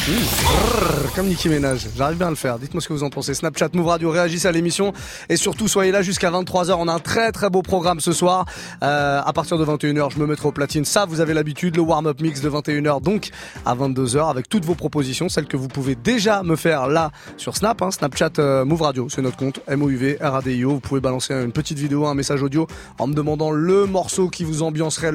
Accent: French